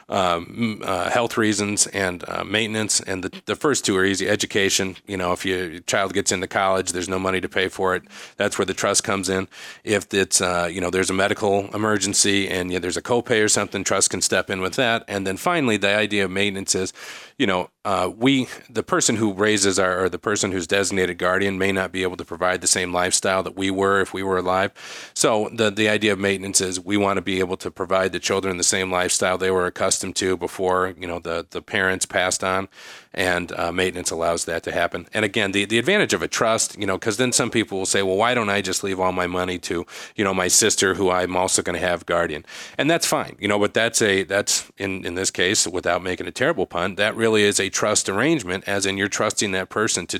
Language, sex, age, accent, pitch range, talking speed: English, male, 40-59, American, 95-105 Hz, 245 wpm